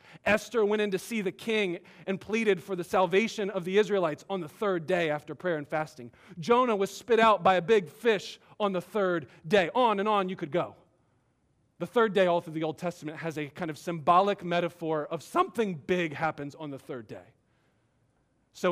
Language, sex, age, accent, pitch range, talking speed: English, male, 40-59, American, 140-195 Hz, 205 wpm